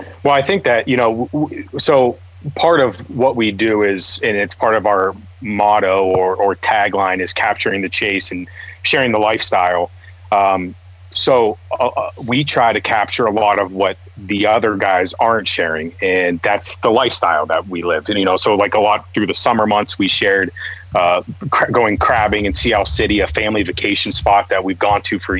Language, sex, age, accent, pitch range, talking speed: English, male, 30-49, American, 90-110 Hz, 195 wpm